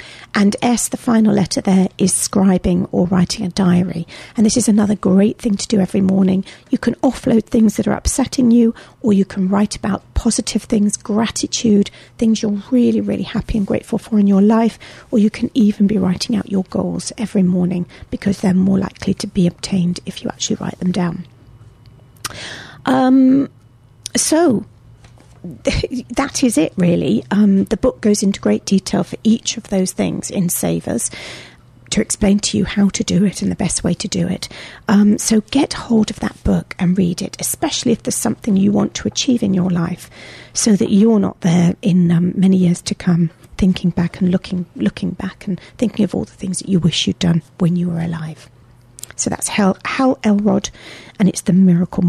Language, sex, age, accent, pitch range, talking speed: English, female, 40-59, British, 180-220 Hz, 195 wpm